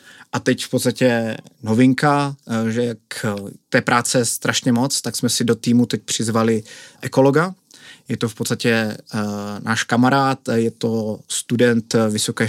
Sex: male